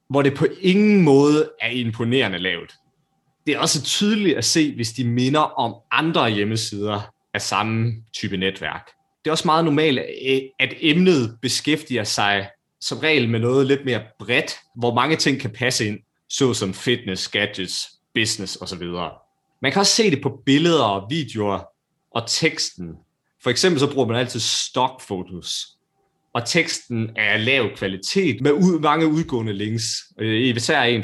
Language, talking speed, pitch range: Danish, 160 wpm, 110-145 Hz